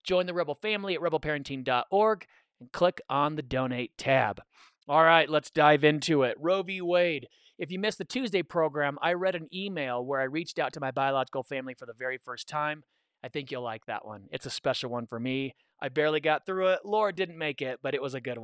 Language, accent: English, American